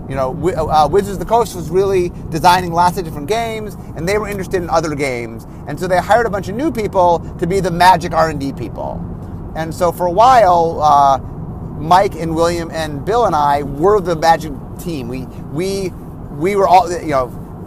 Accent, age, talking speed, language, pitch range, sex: American, 30-49, 200 wpm, English, 150-195 Hz, male